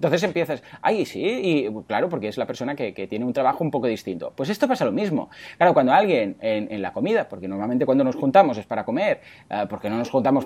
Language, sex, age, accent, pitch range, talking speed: Spanish, male, 30-49, Spanish, 150-225 Hz, 240 wpm